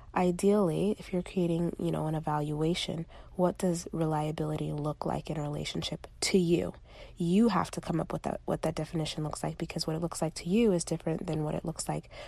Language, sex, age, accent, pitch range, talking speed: English, female, 30-49, American, 160-180 Hz, 215 wpm